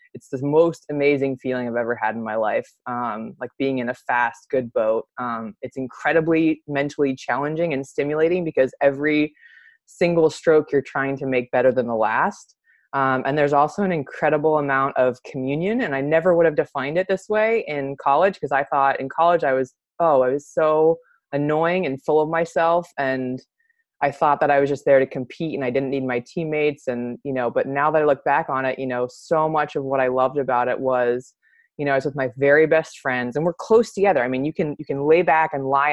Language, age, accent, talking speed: English, 20-39, American, 225 wpm